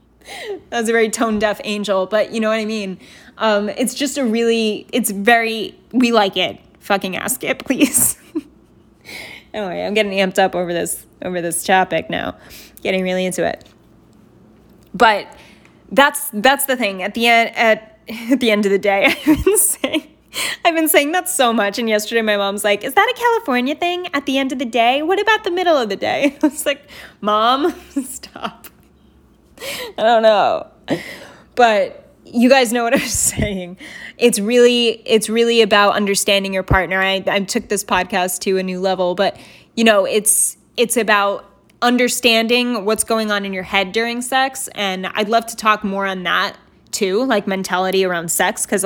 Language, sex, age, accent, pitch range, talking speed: English, female, 10-29, American, 200-265 Hz, 185 wpm